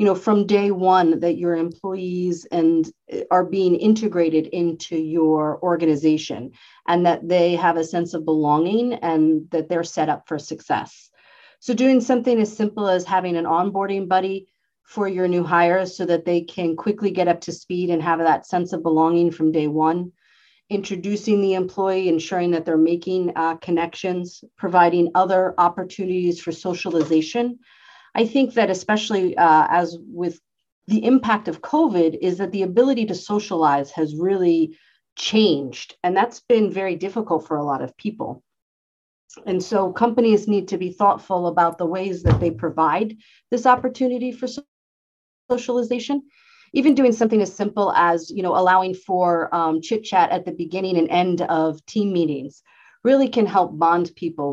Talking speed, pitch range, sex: 165 wpm, 165-205 Hz, female